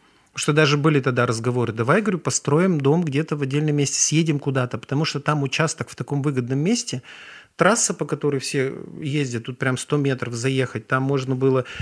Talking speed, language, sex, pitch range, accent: 185 wpm, Russian, male, 130-160 Hz, native